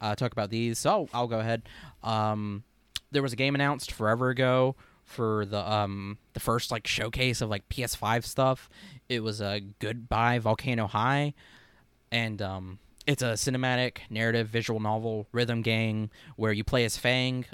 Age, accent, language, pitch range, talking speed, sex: 20-39, American, English, 105-130 Hz, 170 wpm, male